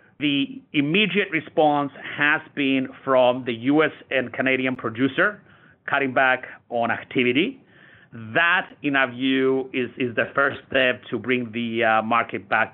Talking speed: 140 wpm